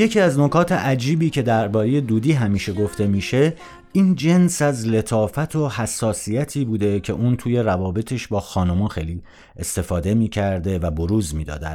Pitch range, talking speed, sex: 90-120 Hz, 150 wpm, male